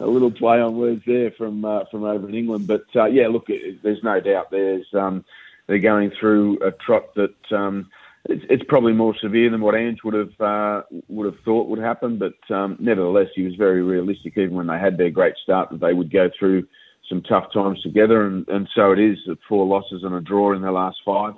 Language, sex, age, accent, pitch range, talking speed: English, male, 30-49, Australian, 90-105 Hz, 225 wpm